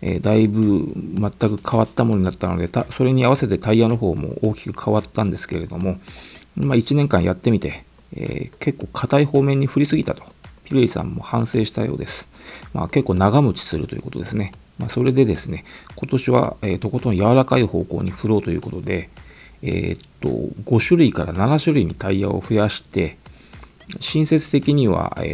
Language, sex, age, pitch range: Japanese, male, 40-59, 100-140 Hz